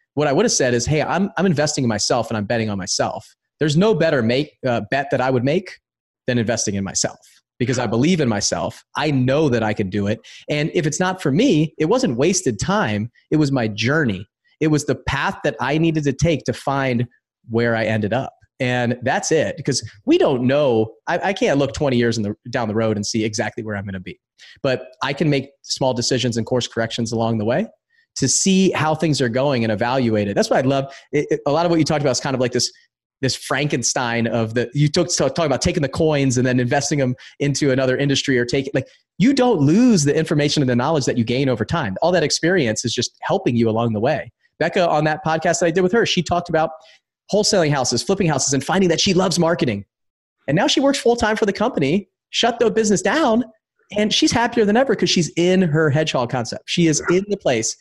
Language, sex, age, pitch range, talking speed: English, male, 30-49, 120-175 Hz, 245 wpm